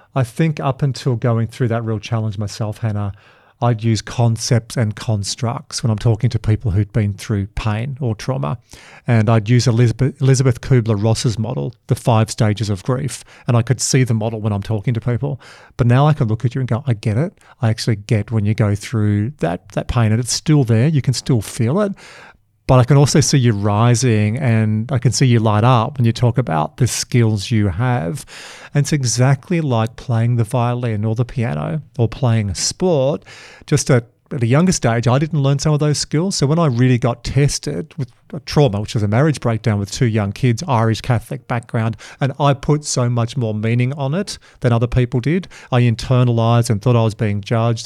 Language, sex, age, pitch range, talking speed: English, male, 40-59, 110-135 Hz, 215 wpm